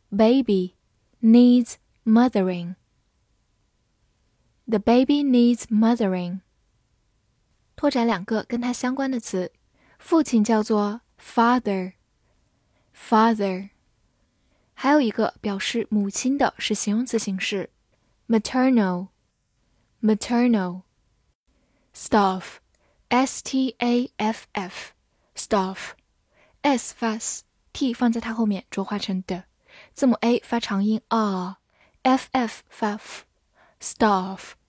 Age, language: 10-29, Chinese